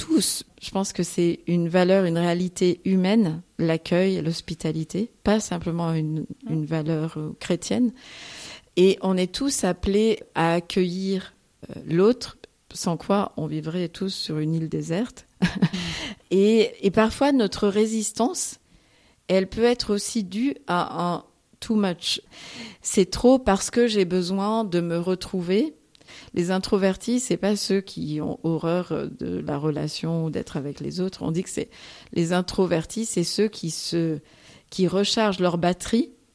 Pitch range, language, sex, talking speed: 170-210 Hz, French, female, 150 wpm